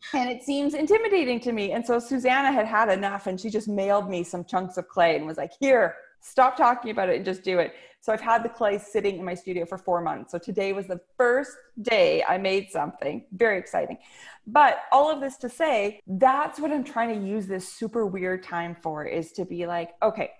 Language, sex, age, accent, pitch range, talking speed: English, female, 30-49, American, 175-250 Hz, 230 wpm